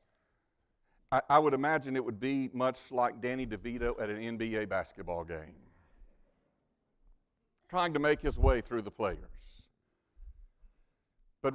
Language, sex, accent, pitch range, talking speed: English, male, American, 125-200 Hz, 125 wpm